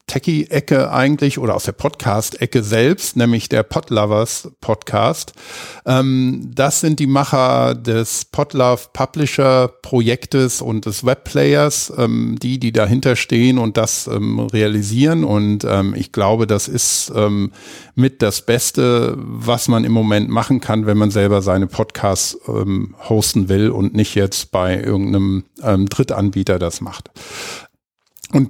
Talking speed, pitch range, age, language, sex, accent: 120 wpm, 105-130 Hz, 50-69, English, male, German